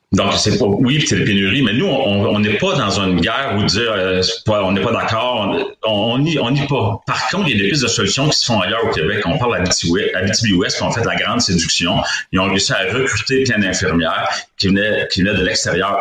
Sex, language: male, French